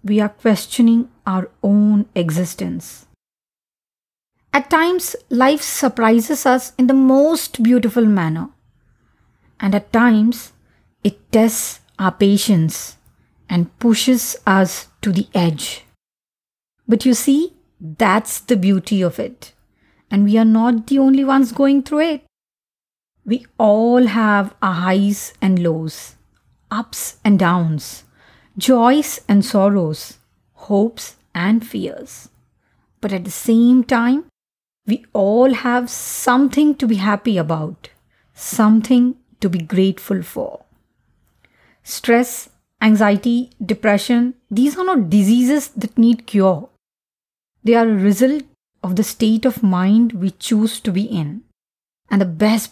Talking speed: 120 wpm